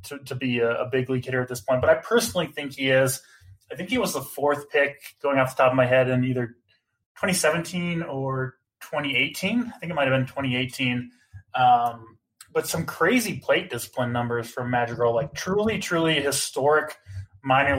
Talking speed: 190 wpm